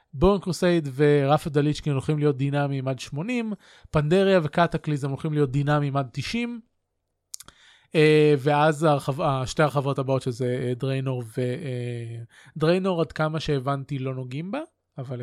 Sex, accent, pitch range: male, native, 130-155 Hz